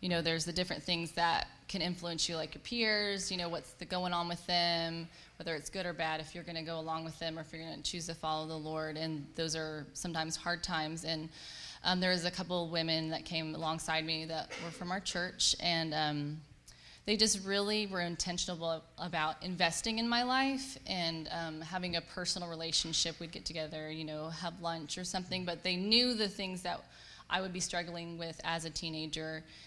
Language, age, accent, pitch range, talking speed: English, 10-29, American, 155-175 Hz, 215 wpm